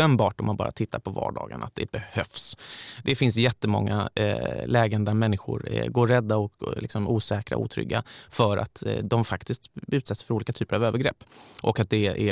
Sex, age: male, 30-49